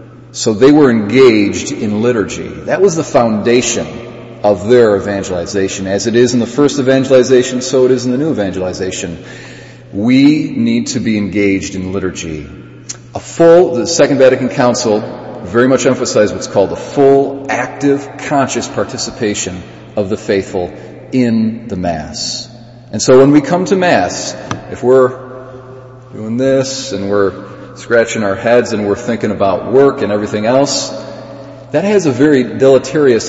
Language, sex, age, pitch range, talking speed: English, male, 40-59, 105-135 Hz, 155 wpm